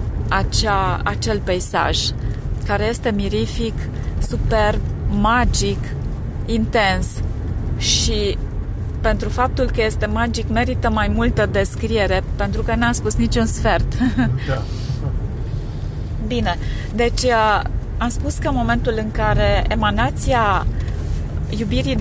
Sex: female